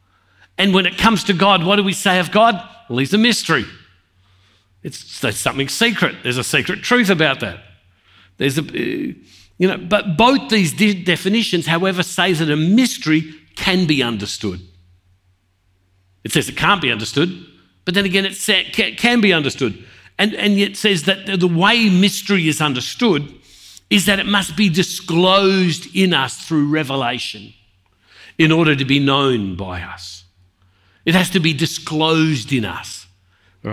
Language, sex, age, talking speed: English, male, 50-69, 165 wpm